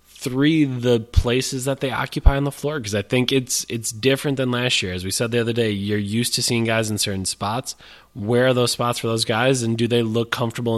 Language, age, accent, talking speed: English, 20-39, American, 245 wpm